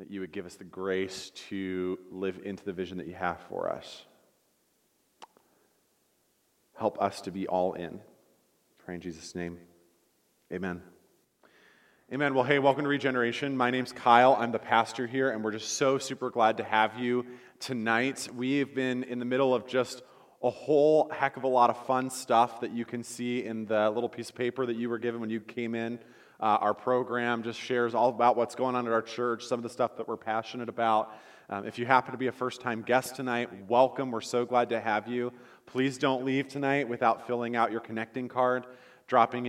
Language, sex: English, male